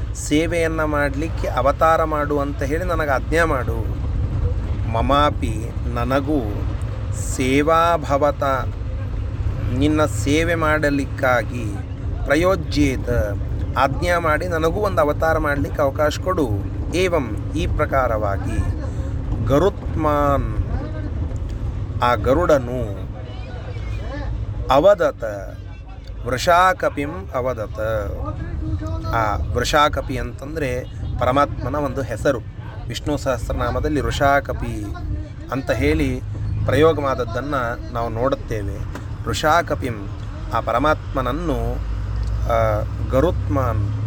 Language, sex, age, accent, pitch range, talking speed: Kannada, male, 30-49, native, 100-130 Hz, 65 wpm